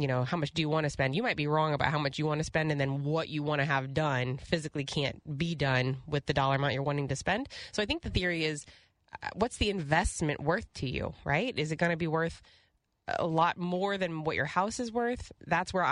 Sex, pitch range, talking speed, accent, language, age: female, 140-175 Hz, 265 wpm, American, English, 20-39